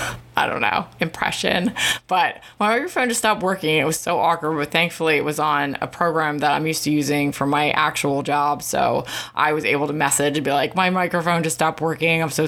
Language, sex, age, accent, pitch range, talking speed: English, female, 20-39, American, 140-170 Hz, 220 wpm